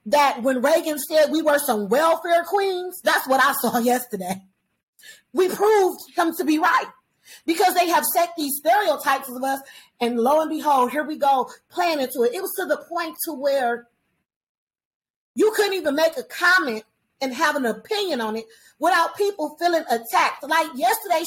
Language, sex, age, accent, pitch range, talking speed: English, female, 40-59, American, 270-345 Hz, 180 wpm